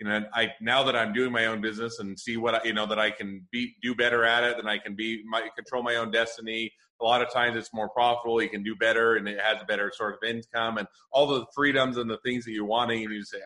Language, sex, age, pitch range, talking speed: English, male, 30-49, 105-120 Hz, 290 wpm